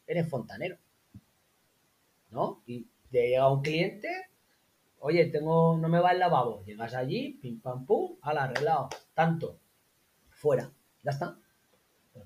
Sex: male